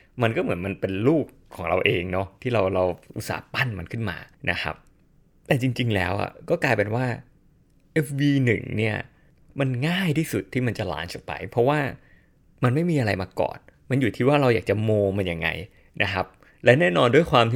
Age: 20-39